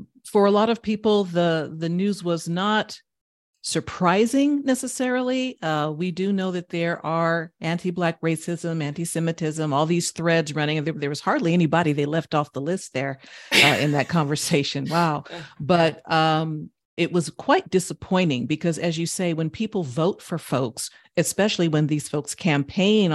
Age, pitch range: 50-69, 145-175 Hz